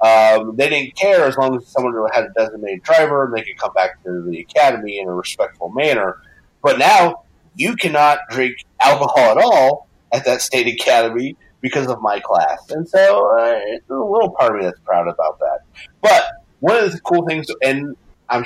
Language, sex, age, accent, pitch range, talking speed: English, male, 30-49, American, 110-140 Hz, 200 wpm